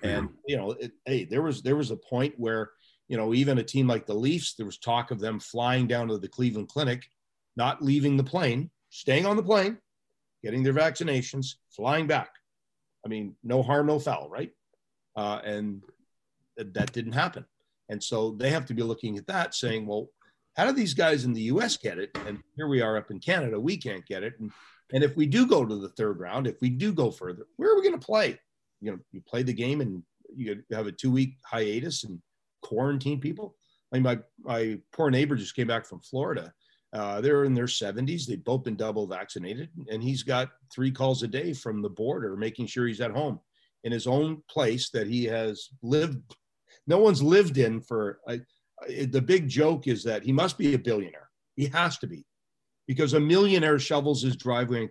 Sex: male